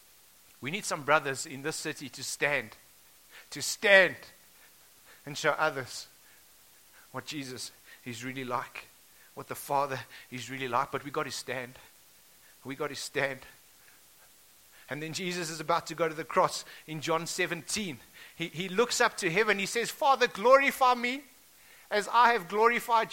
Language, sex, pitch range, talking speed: English, male, 155-230 Hz, 160 wpm